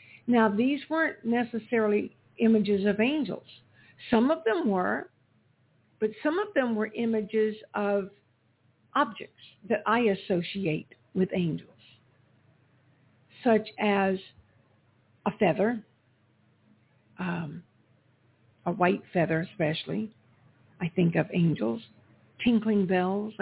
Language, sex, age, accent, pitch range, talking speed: English, female, 60-79, American, 130-215 Hz, 100 wpm